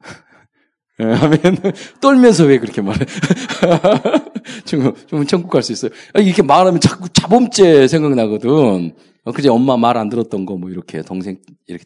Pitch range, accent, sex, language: 130-220 Hz, native, male, Korean